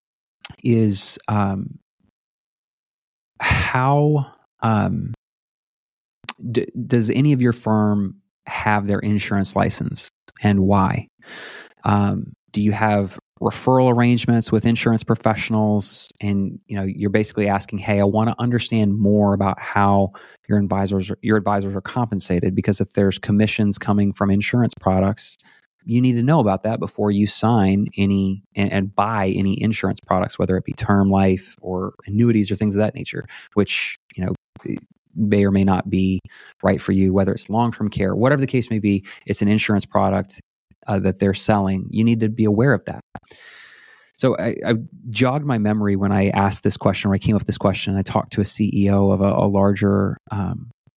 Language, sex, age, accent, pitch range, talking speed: English, male, 20-39, American, 100-110 Hz, 170 wpm